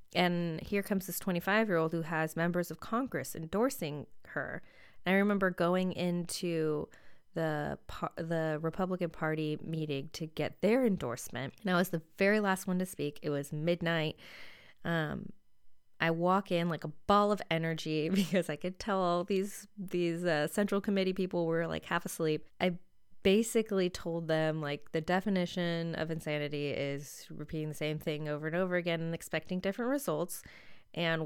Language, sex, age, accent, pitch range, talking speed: English, female, 20-39, American, 155-185 Hz, 160 wpm